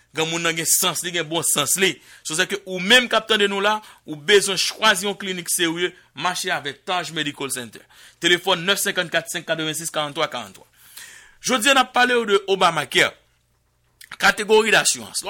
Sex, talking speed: male, 165 wpm